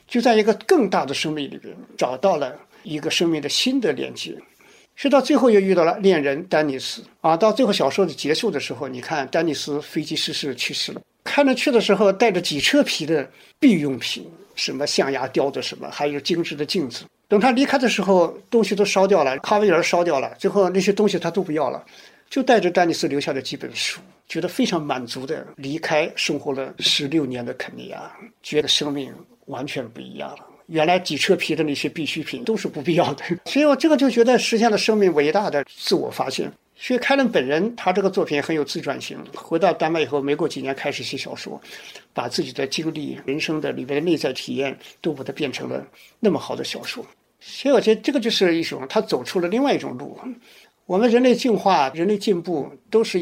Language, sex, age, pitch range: Chinese, male, 50-69, 150-225 Hz